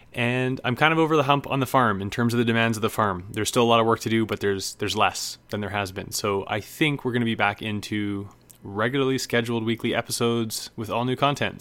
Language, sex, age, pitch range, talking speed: English, male, 20-39, 105-125 Hz, 265 wpm